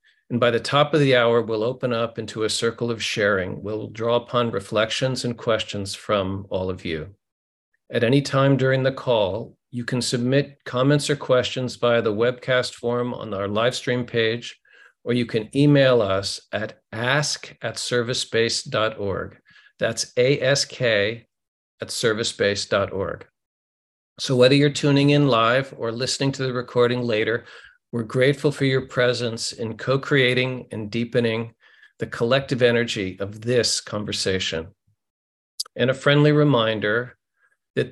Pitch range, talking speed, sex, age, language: 110-130 Hz, 140 wpm, male, 50-69, English